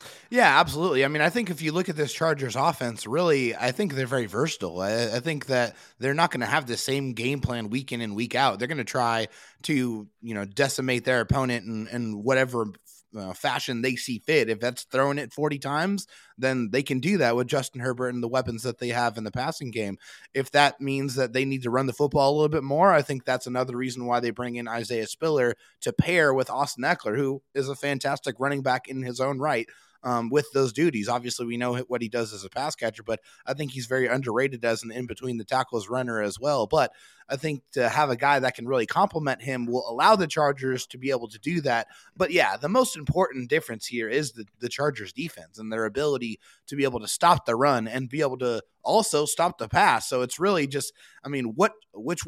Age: 20-39